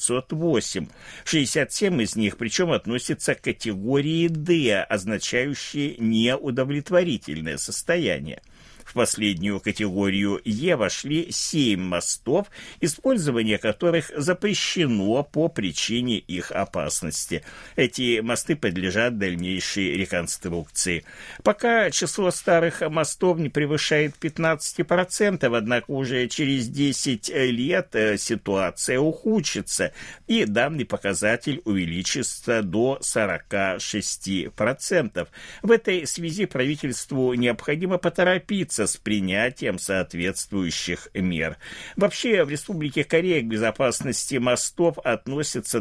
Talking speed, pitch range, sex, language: 90 wpm, 105-160 Hz, male, Russian